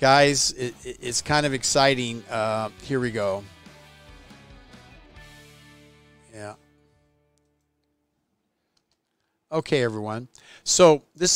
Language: English